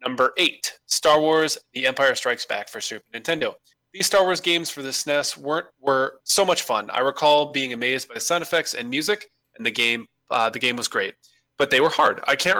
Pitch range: 125-155 Hz